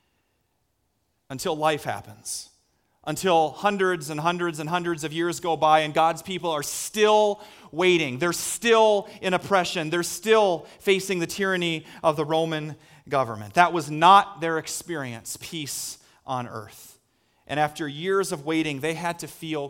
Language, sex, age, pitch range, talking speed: English, male, 30-49, 130-170 Hz, 150 wpm